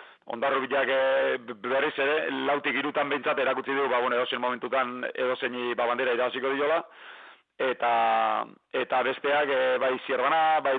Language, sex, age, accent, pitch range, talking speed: Spanish, male, 40-59, Spanish, 125-145 Hz, 155 wpm